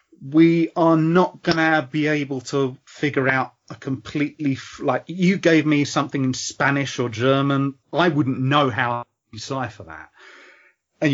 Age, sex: 30-49, male